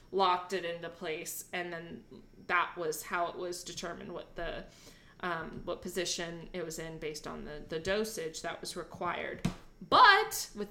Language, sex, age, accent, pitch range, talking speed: English, female, 20-39, American, 185-285 Hz, 170 wpm